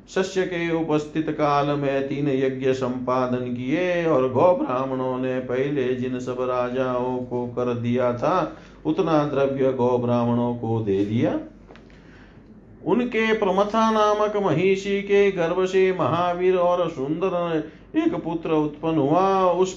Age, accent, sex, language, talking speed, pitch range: 40-59, native, male, Hindi, 130 wpm, 135-175 Hz